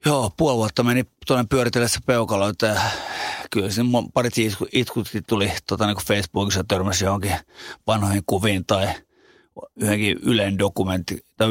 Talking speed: 125 wpm